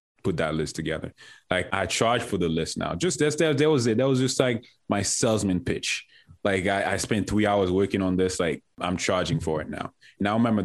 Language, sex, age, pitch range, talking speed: English, male, 20-39, 110-150 Hz, 235 wpm